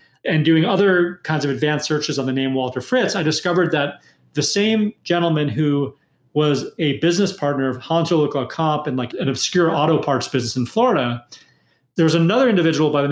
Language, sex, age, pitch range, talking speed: English, male, 30-49, 140-175 Hz, 190 wpm